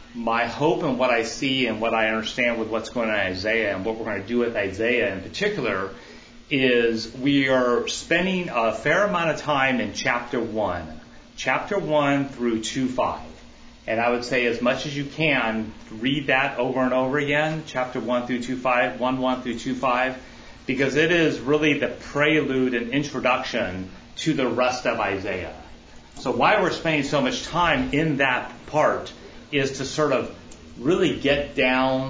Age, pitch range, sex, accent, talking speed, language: 30-49, 115-140 Hz, male, American, 185 wpm, English